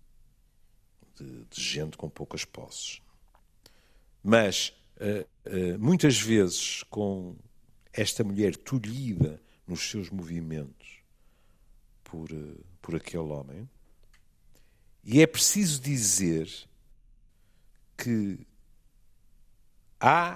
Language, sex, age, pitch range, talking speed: Portuguese, male, 50-69, 85-115 Hz, 85 wpm